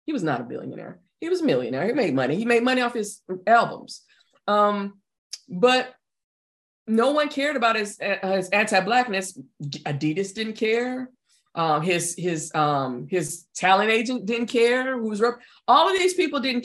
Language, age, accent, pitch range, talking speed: English, 20-39, American, 185-245 Hz, 175 wpm